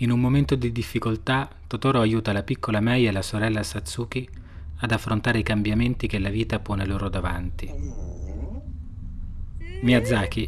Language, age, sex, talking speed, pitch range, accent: Italian, 30-49, male, 145 wpm, 85-110 Hz, native